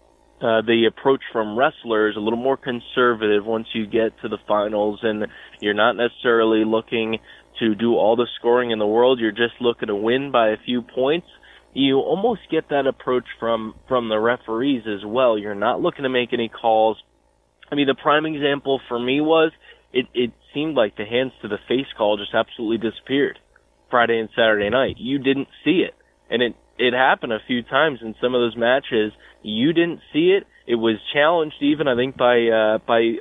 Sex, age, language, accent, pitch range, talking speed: male, 20-39, English, American, 110-135 Hz, 195 wpm